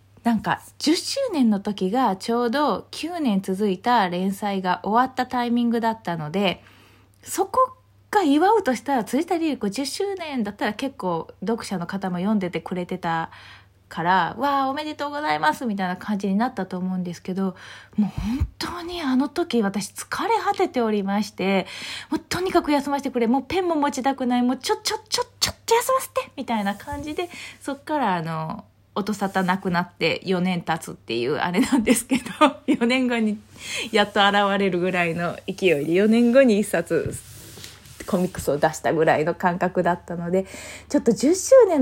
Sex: female